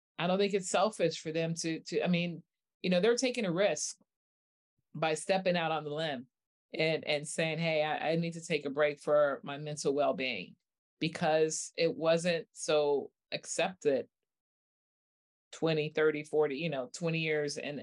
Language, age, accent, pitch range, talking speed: English, 30-49, American, 140-165 Hz, 175 wpm